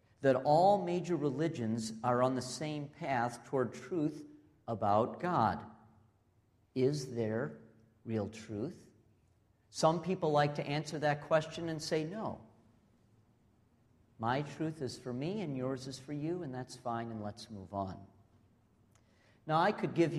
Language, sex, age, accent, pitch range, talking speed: English, male, 50-69, American, 110-150 Hz, 145 wpm